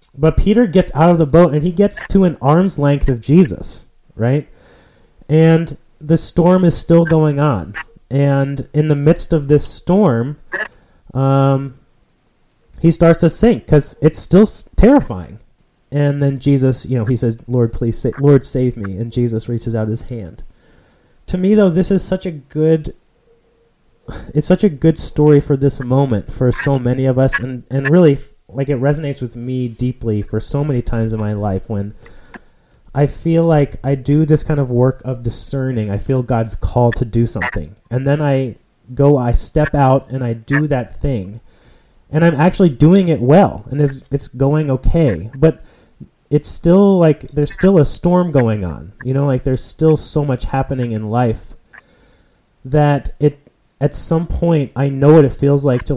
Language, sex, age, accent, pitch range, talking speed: English, male, 30-49, American, 120-155 Hz, 185 wpm